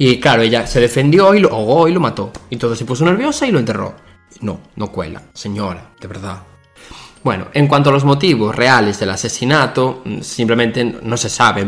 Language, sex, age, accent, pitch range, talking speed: Spanish, male, 20-39, Spanish, 105-130 Hz, 205 wpm